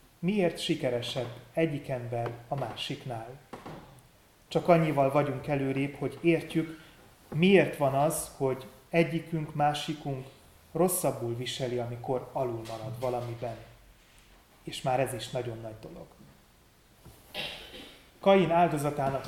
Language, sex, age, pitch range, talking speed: Hungarian, male, 30-49, 125-165 Hz, 105 wpm